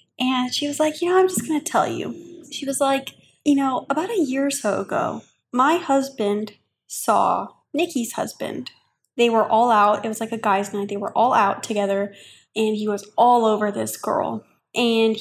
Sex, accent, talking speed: female, American, 200 wpm